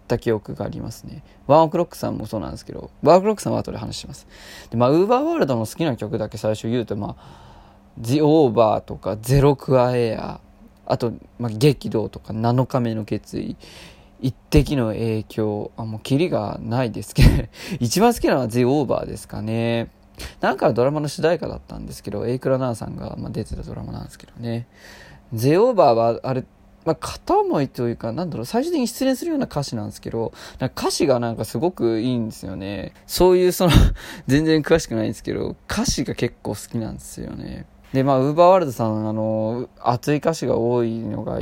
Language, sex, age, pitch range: Japanese, male, 20-39, 115-150 Hz